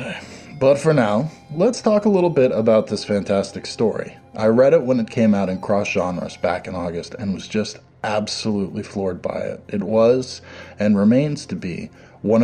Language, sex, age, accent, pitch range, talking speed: English, male, 20-39, American, 95-125 Hz, 185 wpm